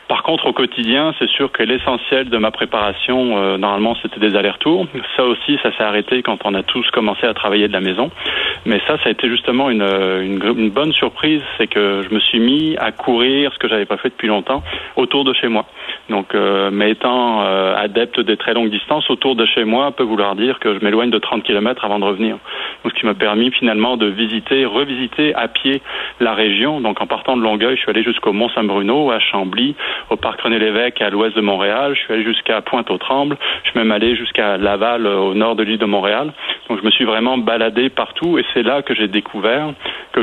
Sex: male